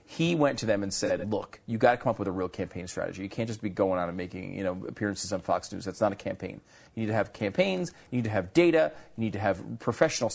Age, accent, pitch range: 30-49, American, 100-135 Hz